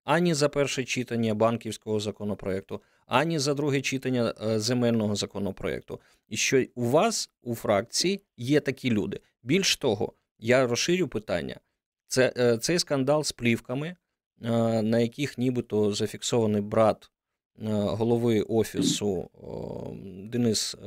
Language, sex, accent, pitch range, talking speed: Ukrainian, male, native, 110-135 Hz, 110 wpm